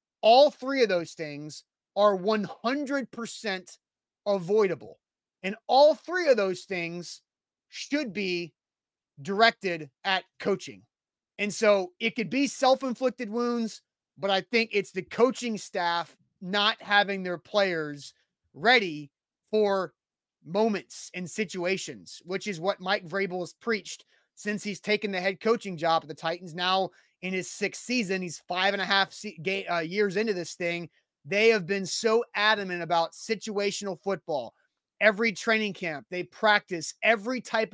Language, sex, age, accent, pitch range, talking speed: English, male, 30-49, American, 185-235 Hz, 140 wpm